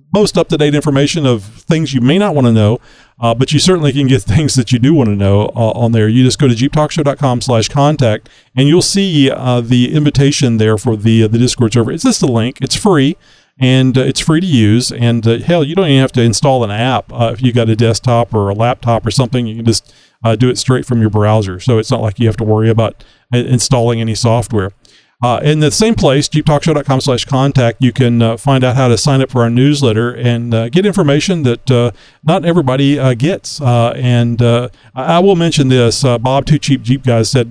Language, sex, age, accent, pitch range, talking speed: English, male, 40-59, American, 115-140 Hz, 235 wpm